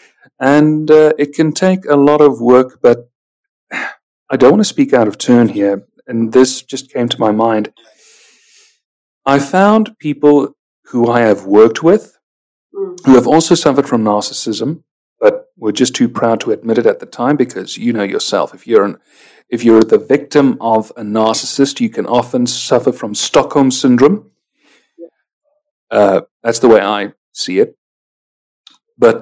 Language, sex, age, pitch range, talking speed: English, male, 40-59, 120-195 Hz, 165 wpm